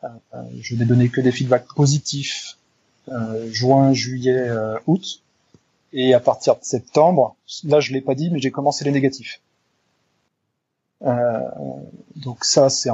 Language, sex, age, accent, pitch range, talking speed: French, male, 20-39, French, 120-135 Hz, 155 wpm